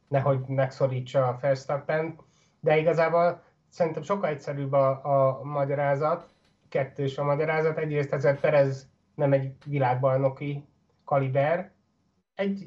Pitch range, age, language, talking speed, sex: 135-160 Hz, 30-49, Hungarian, 110 wpm, male